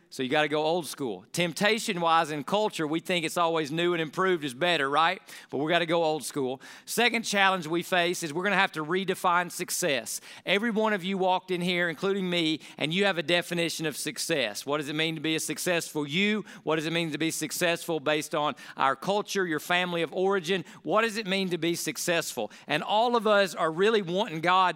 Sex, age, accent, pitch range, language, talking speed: male, 40-59, American, 160-200 Hz, English, 230 wpm